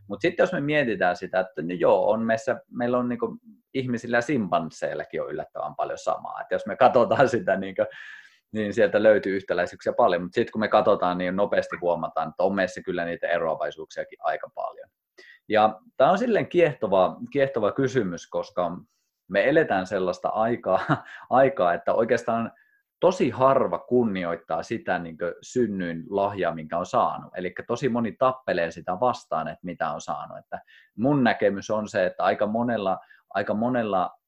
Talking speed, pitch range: 165 wpm, 95-125 Hz